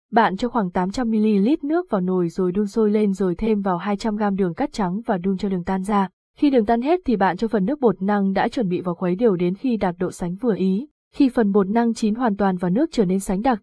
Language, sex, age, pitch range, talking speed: Vietnamese, female, 20-39, 190-230 Hz, 270 wpm